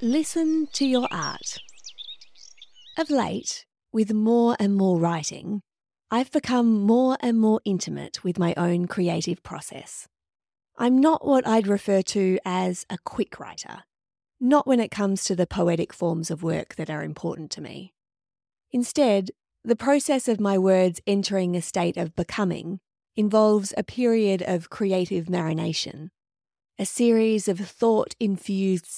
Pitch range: 180-235 Hz